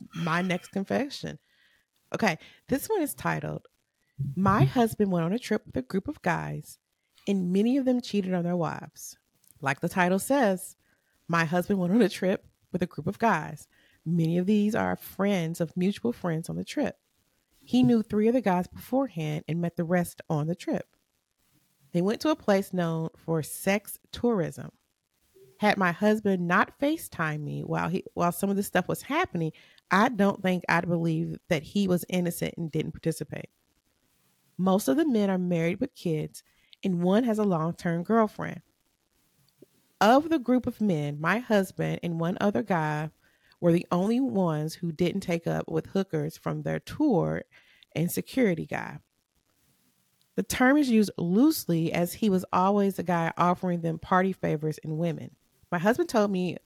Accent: American